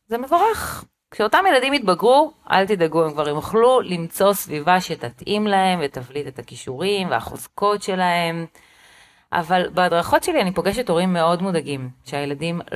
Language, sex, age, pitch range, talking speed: Hebrew, female, 30-49, 145-210 Hz, 130 wpm